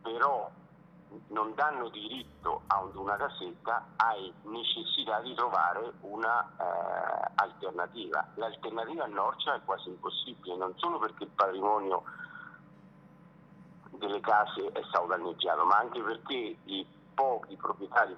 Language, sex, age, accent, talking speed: Italian, male, 50-69, native, 115 wpm